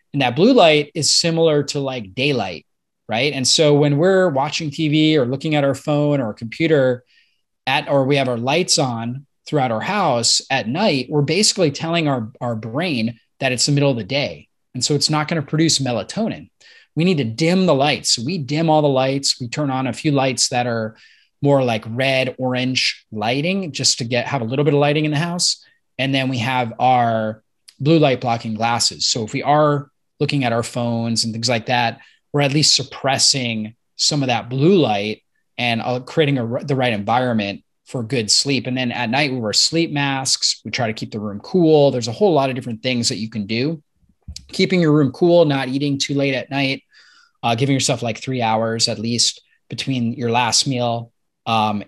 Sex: male